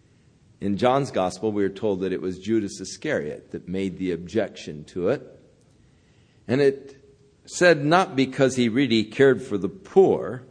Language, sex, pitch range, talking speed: English, male, 120-190 Hz, 160 wpm